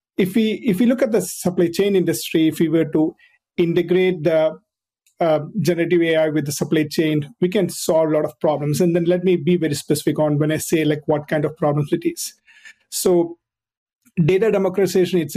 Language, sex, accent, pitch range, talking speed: English, male, Indian, 155-180 Hz, 205 wpm